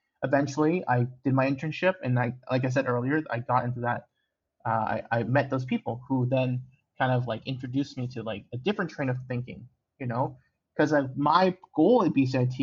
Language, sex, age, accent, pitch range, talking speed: English, male, 20-39, American, 125-155 Hz, 200 wpm